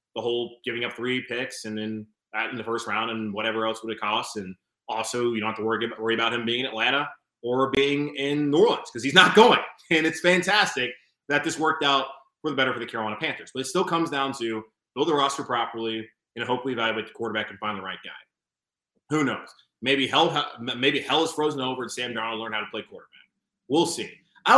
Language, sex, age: English, male, 20-39